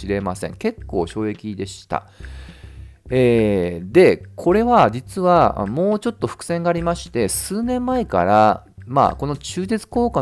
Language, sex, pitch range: Japanese, male, 110-180 Hz